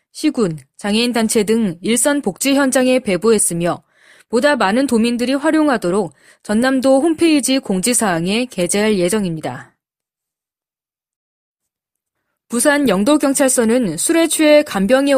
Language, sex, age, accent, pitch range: Korean, female, 20-39, native, 190-275 Hz